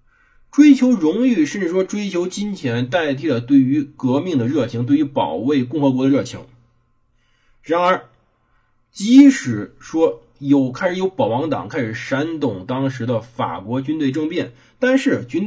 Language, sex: Chinese, male